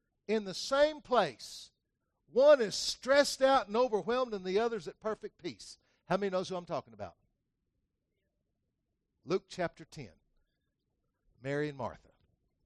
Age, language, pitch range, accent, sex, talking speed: 60-79, English, 155-220 Hz, American, male, 140 wpm